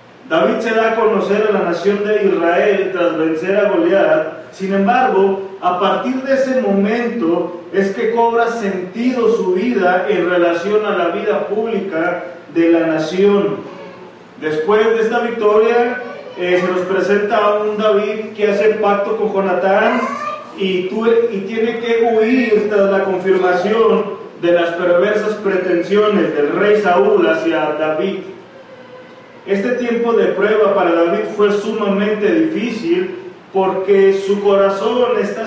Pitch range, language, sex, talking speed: 190-225 Hz, Spanish, male, 135 wpm